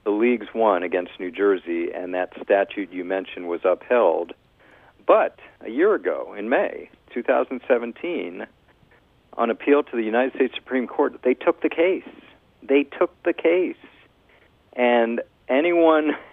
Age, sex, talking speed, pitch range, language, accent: 50-69, male, 140 wpm, 105-170 Hz, English, American